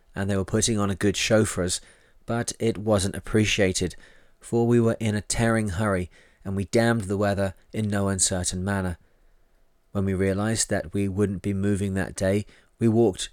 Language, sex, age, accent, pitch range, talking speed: English, male, 30-49, British, 95-115 Hz, 190 wpm